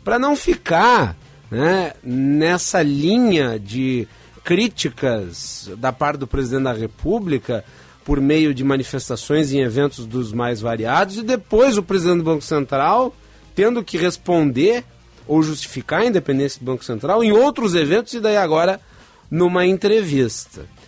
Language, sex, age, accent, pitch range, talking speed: Portuguese, male, 40-59, Brazilian, 130-175 Hz, 140 wpm